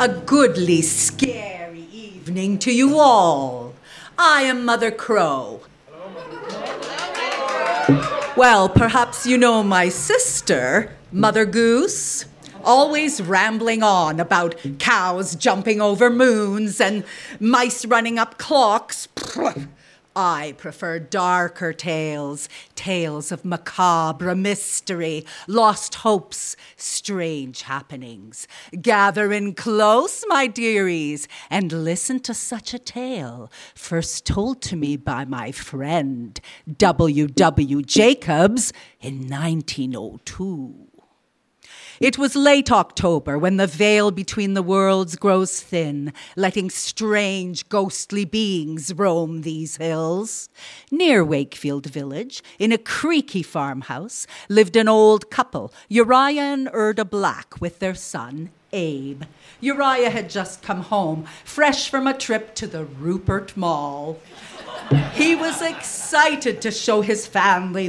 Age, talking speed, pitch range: 50-69, 110 wpm, 160-225 Hz